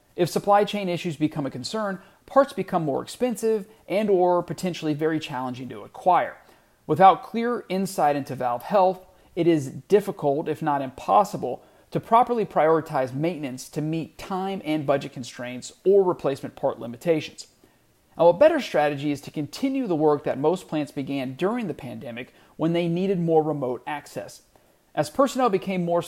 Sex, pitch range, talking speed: male, 140-190 Hz, 160 wpm